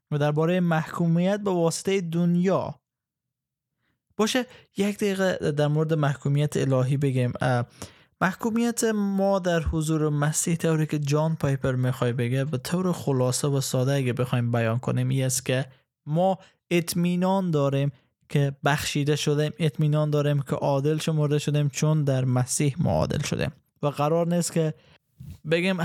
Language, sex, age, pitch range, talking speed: Persian, male, 20-39, 140-175 Hz, 140 wpm